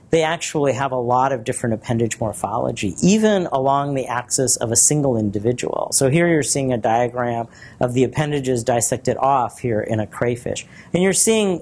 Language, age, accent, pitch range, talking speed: English, 40-59, American, 115-140 Hz, 180 wpm